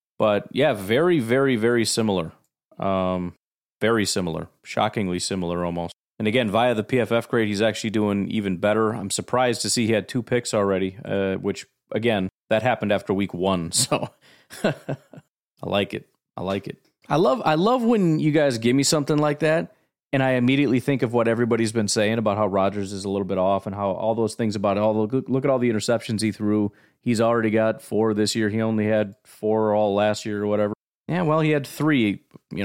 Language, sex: English, male